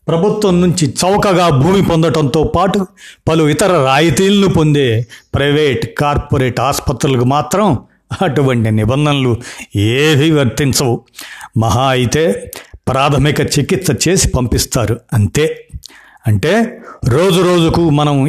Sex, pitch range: male, 125-160 Hz